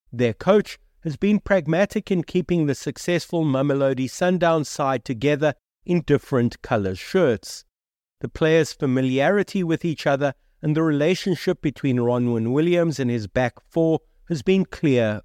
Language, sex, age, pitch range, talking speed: English, male, 50-69, 120-160 Hz, 140 wpm